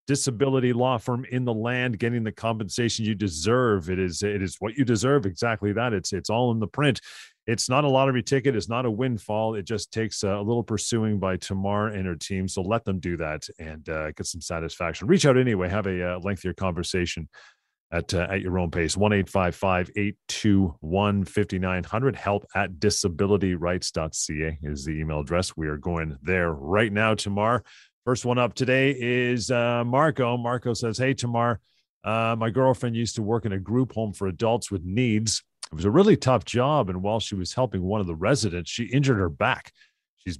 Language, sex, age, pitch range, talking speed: English, male, 40-59, 95-120 Hz, 200 wpm